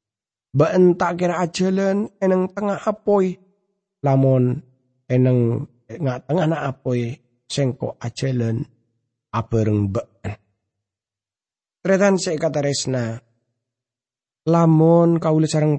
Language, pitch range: English, 130-195 Hz